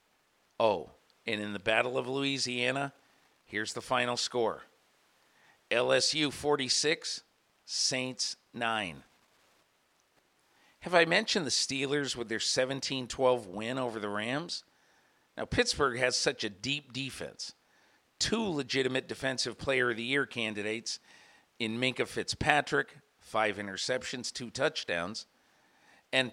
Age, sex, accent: 50-69, male, American